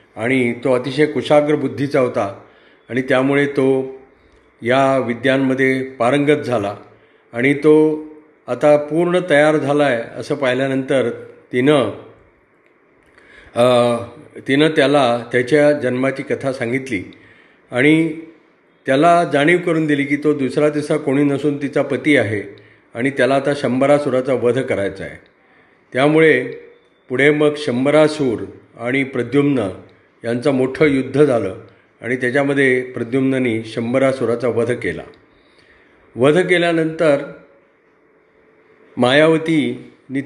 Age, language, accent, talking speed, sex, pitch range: 40-59, Marathi, native, 105 wpm, male, 125-150 Hz